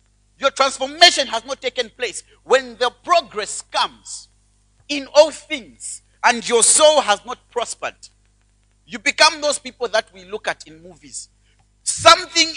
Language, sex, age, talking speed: English, male, 50-69, 145 wpm